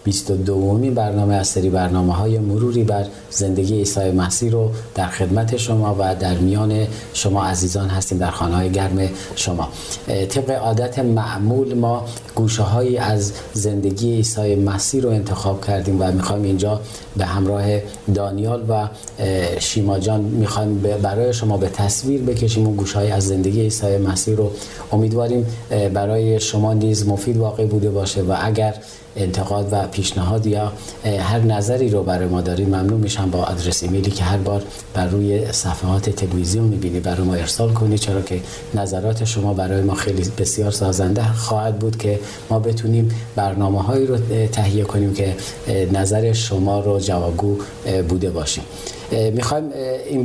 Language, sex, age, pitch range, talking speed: Persian, male, 40-59, 95-110 Hz, 150 wpm